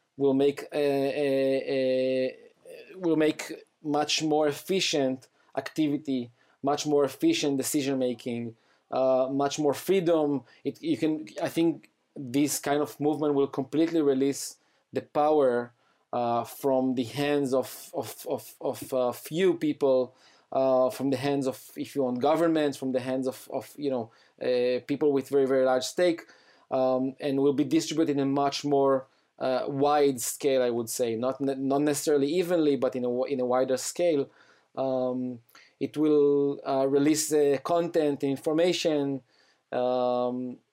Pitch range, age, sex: 130-150 Hz, 20-39, male